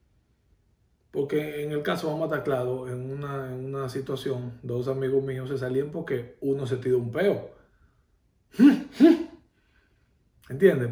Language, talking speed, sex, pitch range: Spanish, 120 wpm, male, 130-155 Hz